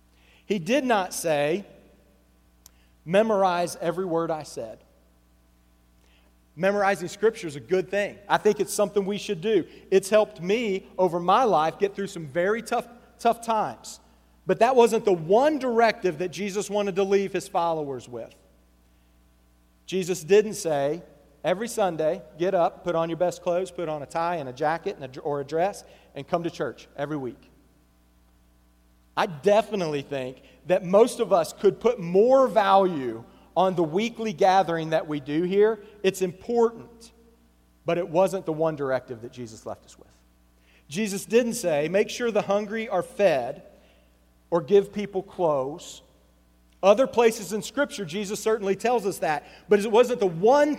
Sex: male